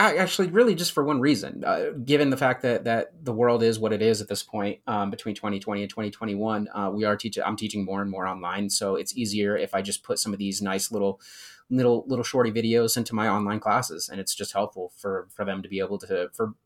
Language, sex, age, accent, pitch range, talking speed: English, male, 30-49, American, 105-130 Hz, 250 wpm